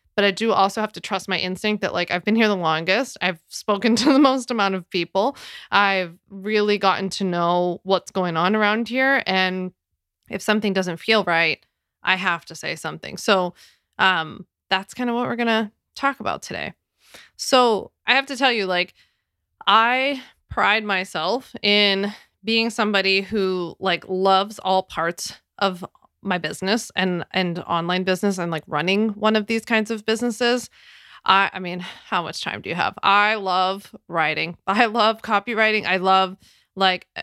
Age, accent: 20-39, American